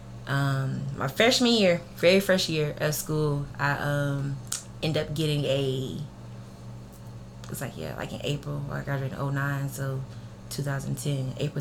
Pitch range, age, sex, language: 135-160 Hz, 20-39, female, English